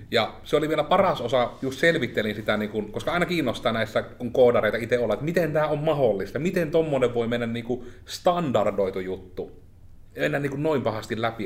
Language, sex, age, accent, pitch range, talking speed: Finnish, male, 30-49, native, 105-140 Hz, 160 wpm